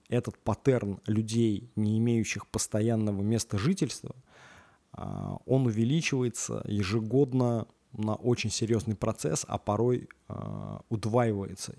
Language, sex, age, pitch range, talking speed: Russian, male, 20-39, 105-125 Hz, 90 wpm